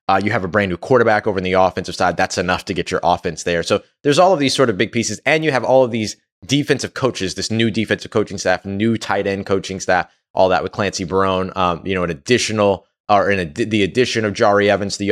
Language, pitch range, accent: English, 100-140 Hz, American